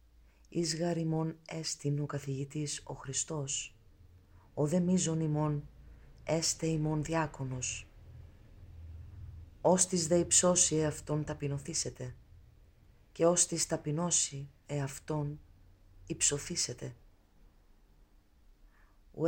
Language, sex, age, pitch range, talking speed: Greek, female, 30-49, 110-155 Hz, 85 wpm